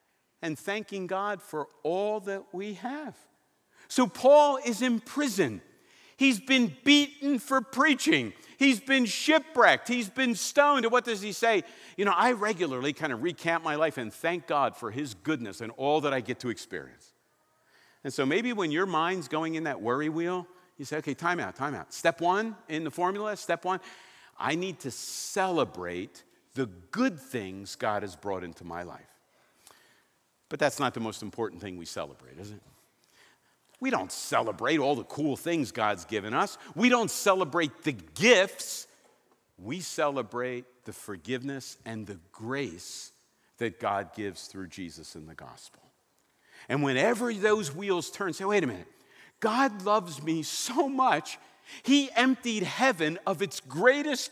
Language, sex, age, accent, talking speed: English, male, 50-69, American, 165 wpm